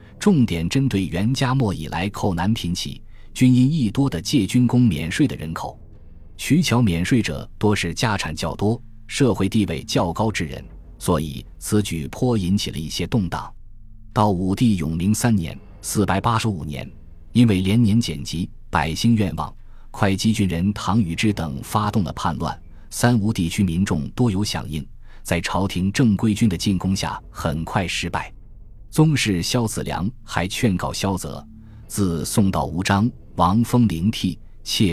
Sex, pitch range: male, 85-110 Hz